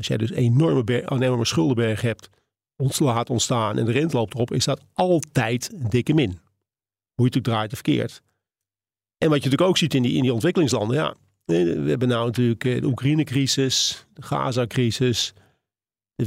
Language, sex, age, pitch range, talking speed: Dutch, male, 40-59, 115-140 Hz, 190 wpm